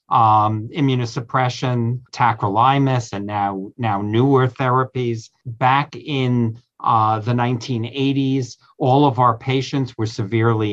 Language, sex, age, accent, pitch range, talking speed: English, male, 50-69, American, 120-150 Hz, 105 wpm